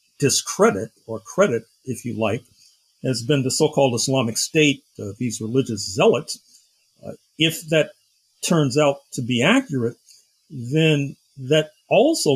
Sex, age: male, 50-69